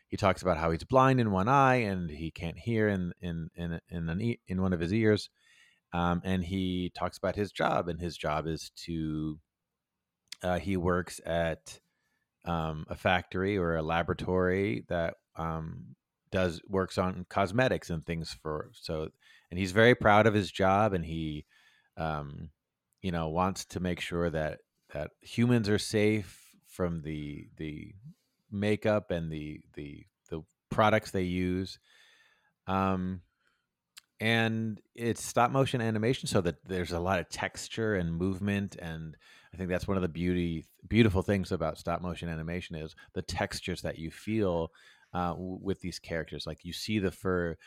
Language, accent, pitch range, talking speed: English, American, 85-105 Hz, 165 wpm